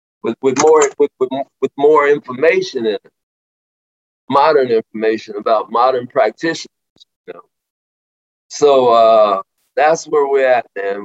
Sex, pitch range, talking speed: male, 105-165 Hz, 130 wpm